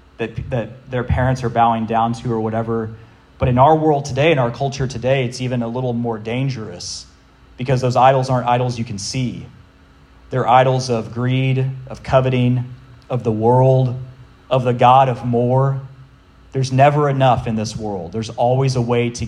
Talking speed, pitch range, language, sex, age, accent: 175 wpm, 110-130 Hz, English, male, 30-49, American